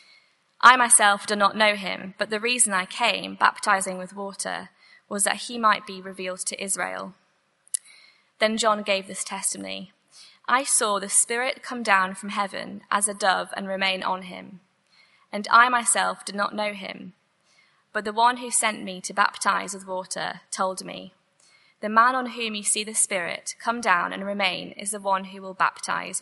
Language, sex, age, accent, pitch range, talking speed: English, female, 20-39, British, 190-230 Hz, 180 wpm